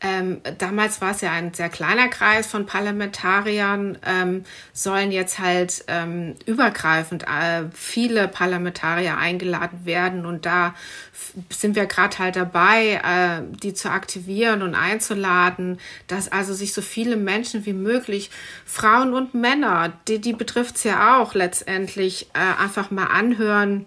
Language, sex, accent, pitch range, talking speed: German, female, German, 180-210 Hz, 140 wpm